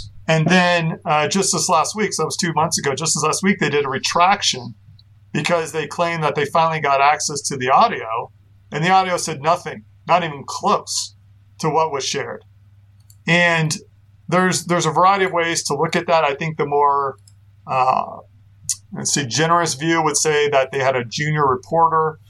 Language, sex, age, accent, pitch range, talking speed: English, male, 50-69, American, 120-165 Hz, 190 wpm